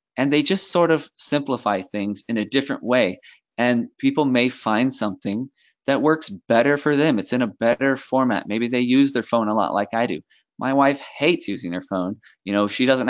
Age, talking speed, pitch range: 20-39, 215 wpm, 110-135 Hz